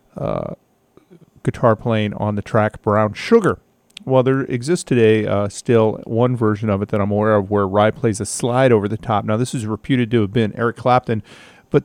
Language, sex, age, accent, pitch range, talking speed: English, male, 40-59, American, 105-135 Hz, 205 wpm